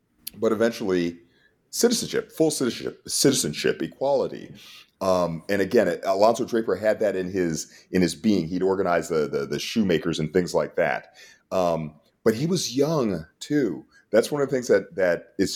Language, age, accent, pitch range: English, 40-59, American, 90-130 Hz